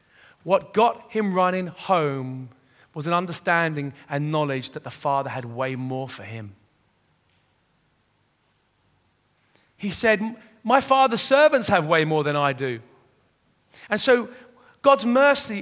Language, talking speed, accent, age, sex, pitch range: English, 125 wpm, British, 30-49, male, 145-235 Hz